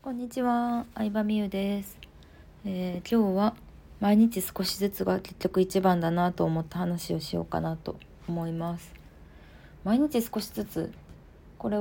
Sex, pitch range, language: female, 155-200 Hz, Japanese